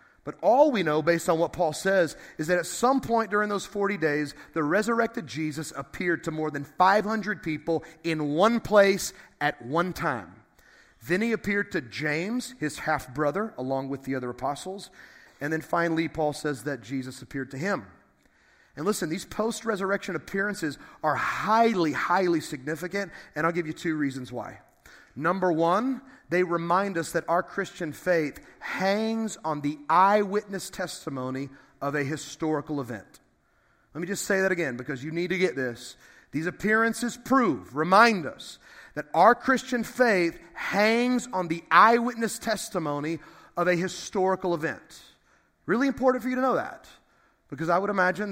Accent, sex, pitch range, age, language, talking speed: American, male, 150-200 Hz, 30-49, English, 160 wpm